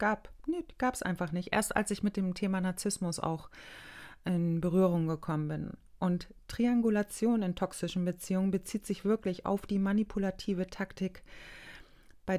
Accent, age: German, 30-49